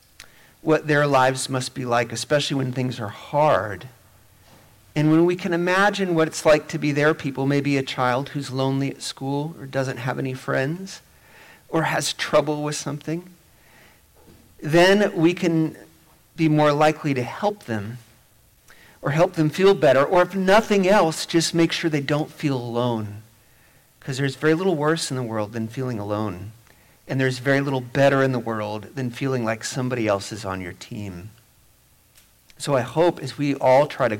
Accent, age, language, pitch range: American, 40-59, English, 110-145 Hz